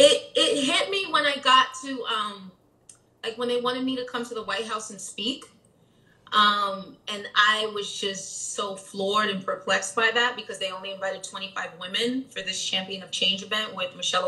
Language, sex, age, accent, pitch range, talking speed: English, female, 30-49, American, 195-250 Hz, 200 wpm